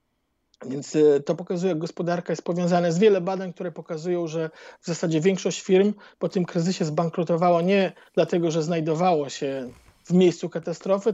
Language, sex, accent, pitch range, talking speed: Polish, male, native, 160-195 Hz, 155 wpm